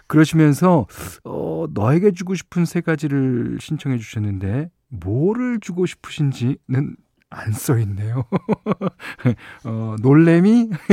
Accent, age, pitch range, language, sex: native, 40-59, 105-150 Hz, Korean, male